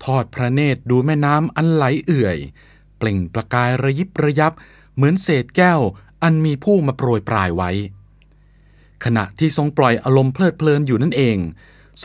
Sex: male